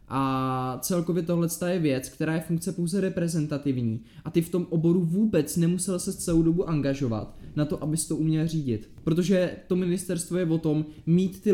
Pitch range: 145-175 Hz